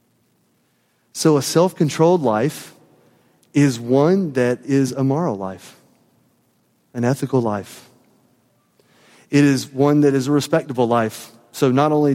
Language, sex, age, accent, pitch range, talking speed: English, male, 30-49, American, 115-135 Hz, 125 wpm